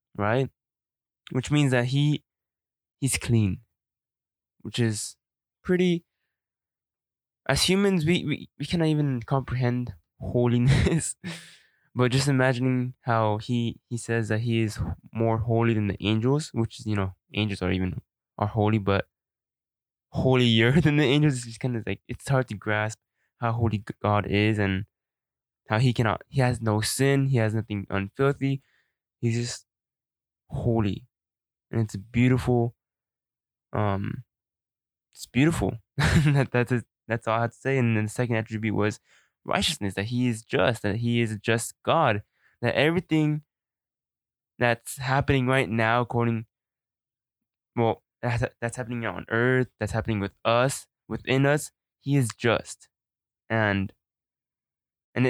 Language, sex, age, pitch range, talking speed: English, male, 20-39, 110-130 Hz, 140 wpm